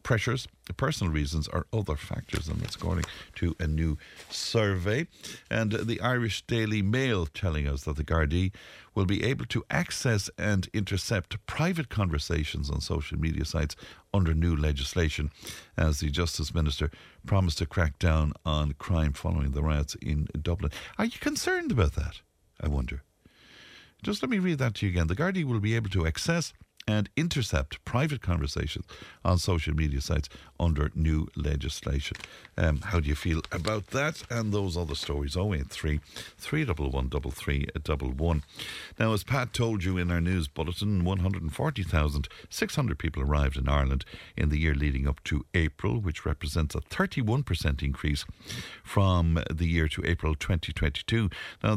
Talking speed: 160 wpm